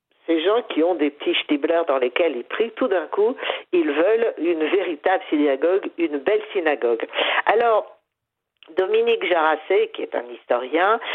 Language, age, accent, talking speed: French, 50-69, French, 155 wpm